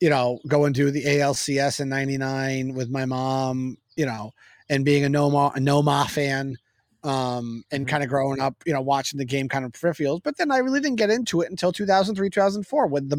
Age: 30-49